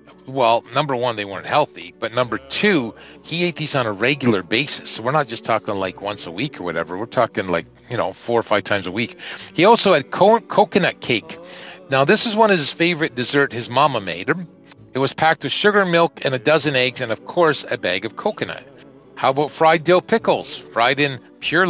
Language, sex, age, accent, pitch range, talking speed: English, male, 40-59, American, 110-155 Hz, 220 wpm